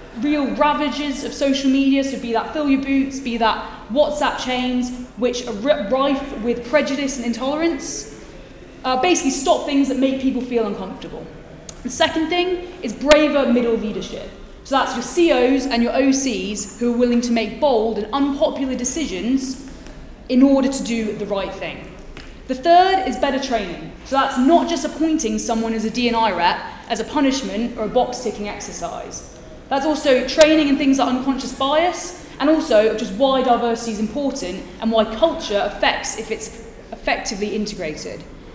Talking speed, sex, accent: 165 wpm, female, British